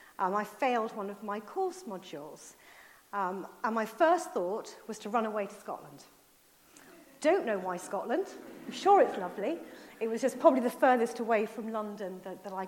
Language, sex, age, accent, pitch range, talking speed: English, female, 40-59, British, 205-285 Hz, 185 wpm